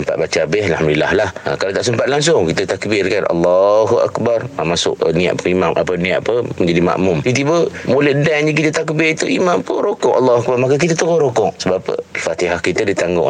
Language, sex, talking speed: Malay, male, 210 wpm